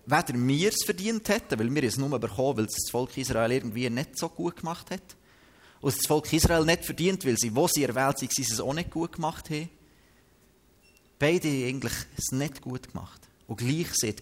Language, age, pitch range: German, 30-49, 115-150 Hz